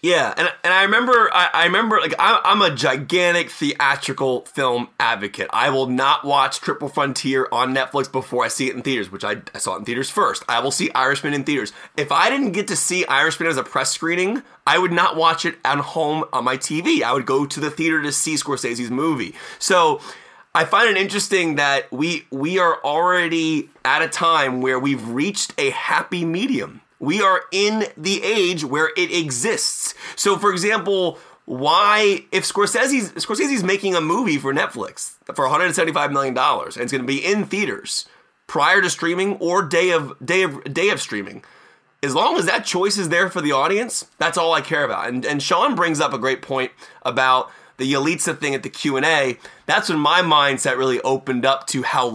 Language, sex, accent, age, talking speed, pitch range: English, male, American, 30-49, 205 wpm, 135-190 Hz